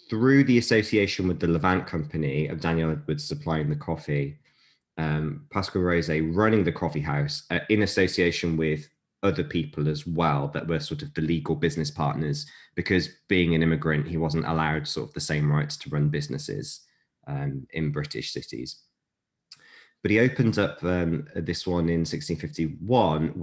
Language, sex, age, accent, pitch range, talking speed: English, male, 20-39, British, 80-100 Hz, 165 wpm